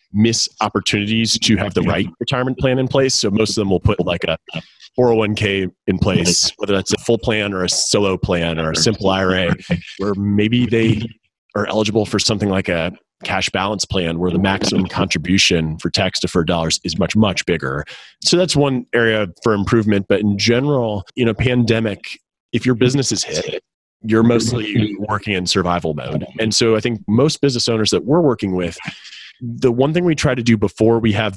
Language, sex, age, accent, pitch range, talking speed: English, male, 30-49, American, 95-120 Hz, 195 wpm